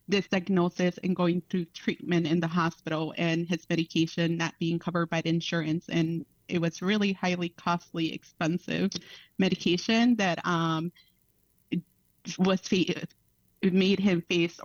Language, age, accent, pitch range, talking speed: English, 30-49, American, 165-195 Hz, 130 wpm